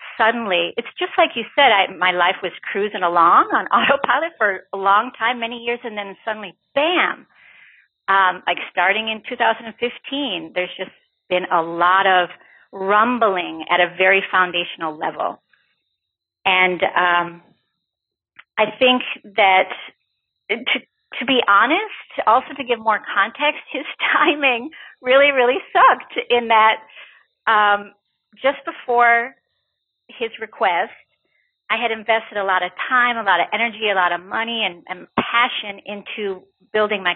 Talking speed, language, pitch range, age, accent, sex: 140 wpm, English, 185-235 Hz, 40-59, American, female